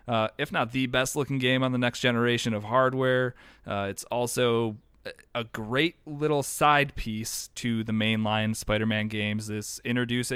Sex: male